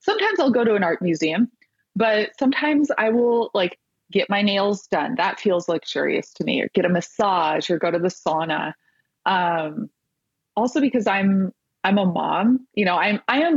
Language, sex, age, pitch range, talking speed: English, female, 20-39, 175-225 Hz, 185 wpm